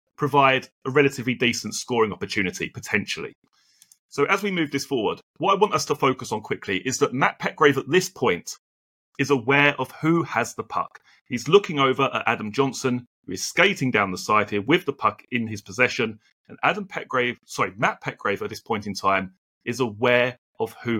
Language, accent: English, British